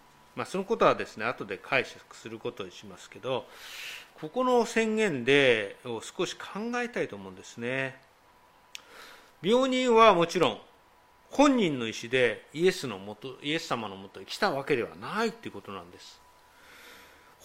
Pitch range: 150-255 Hz